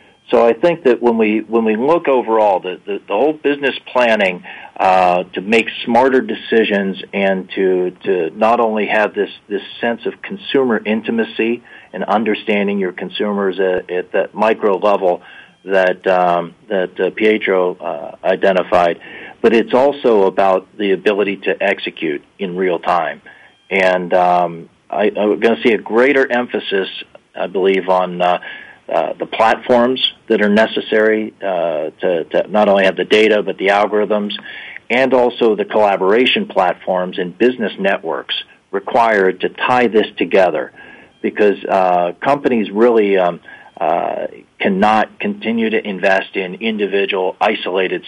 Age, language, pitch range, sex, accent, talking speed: 50-69, English, 90-110 Hz, male, American, 145 wpm